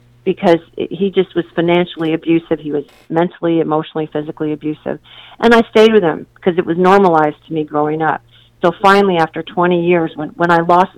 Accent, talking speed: American, 185 wpm